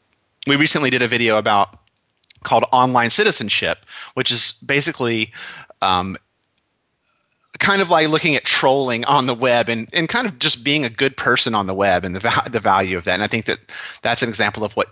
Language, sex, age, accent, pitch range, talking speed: English, male, 30-49, American, 115-145 Hz, 195 wpm